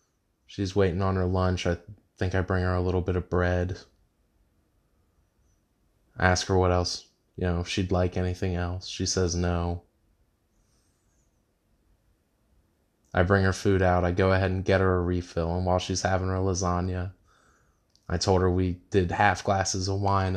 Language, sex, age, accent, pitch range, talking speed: English, male, 20-39, American, 90-100 Hz, 170 wpm